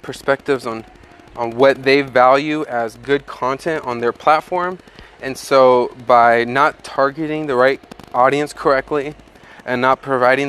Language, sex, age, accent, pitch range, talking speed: English, male, 20-39, American, 125-145 Hz, 135 wpm